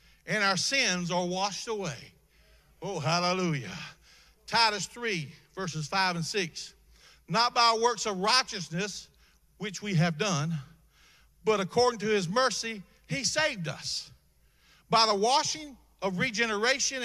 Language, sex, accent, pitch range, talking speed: English, male, American, 170-250 Hz, 125 wpm